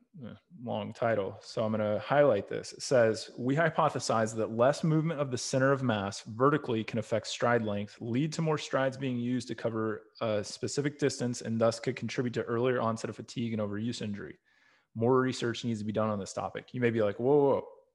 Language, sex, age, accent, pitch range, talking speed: English, male, 20-39, American, 115-150 Hz, 210 wpm